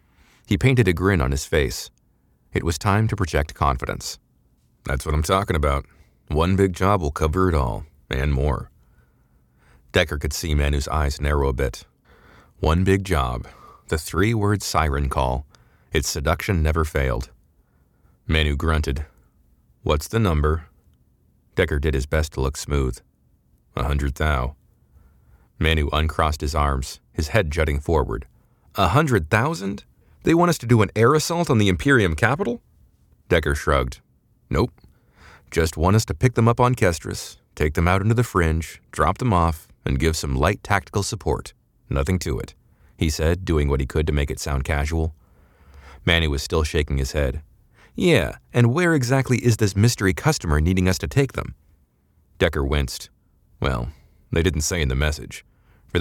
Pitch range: 70-95 Hz